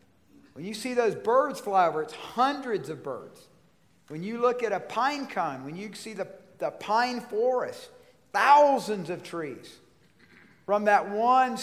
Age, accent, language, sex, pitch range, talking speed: 50-69, American, English, male, 165-235 Hz, 160 wpm